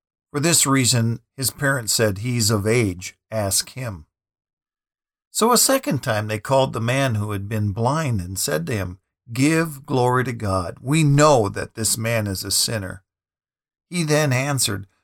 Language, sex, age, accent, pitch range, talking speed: English, male, 50-69, American, 100-145 Hz, 170 wpm